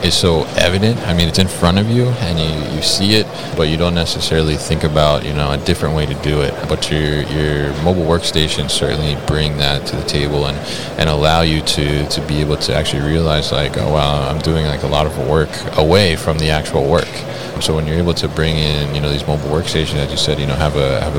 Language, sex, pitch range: English, male, 75-85 Hz